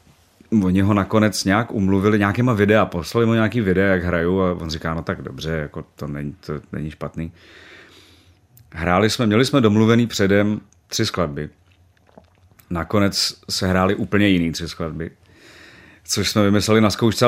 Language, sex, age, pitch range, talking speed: Czech, male, 30-49, 90-110 Hz, 160 wpm